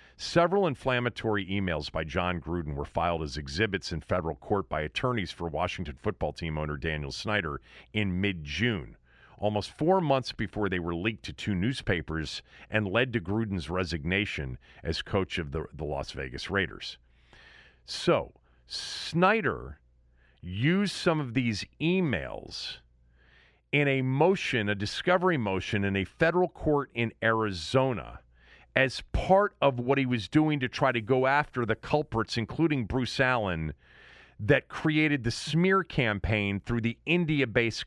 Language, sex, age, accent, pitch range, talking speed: English, male, 50-69, American, 85-130 Hz, 145 wpm